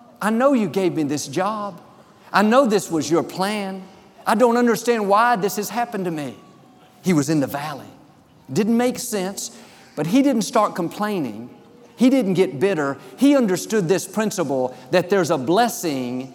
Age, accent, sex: 50-69, American, male